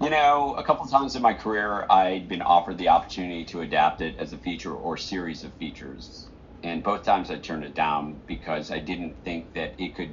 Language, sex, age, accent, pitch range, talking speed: English, male, 40-59, American, 80-95 Hz, 220 wpm